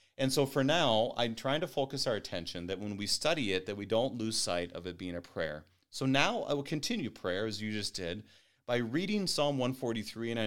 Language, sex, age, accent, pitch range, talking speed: English, male, 30-49, American, 95-125 Hz, 235 wpm